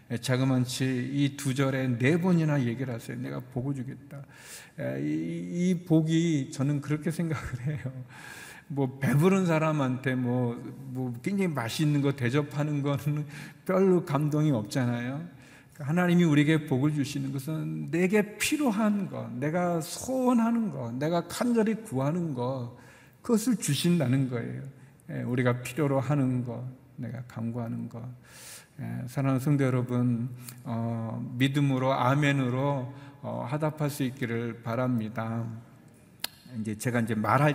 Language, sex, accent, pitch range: Korean, male, native, 125-155 Hz